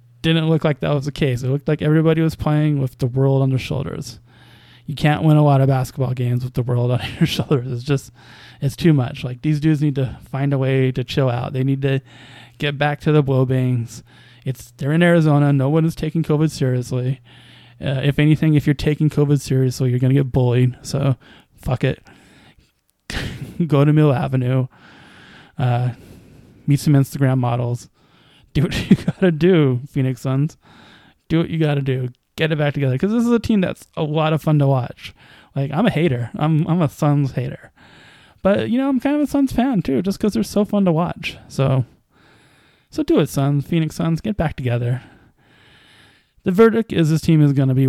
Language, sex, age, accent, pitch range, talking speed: English, male, 20-39, American, 130-160 Hz, 205 wpm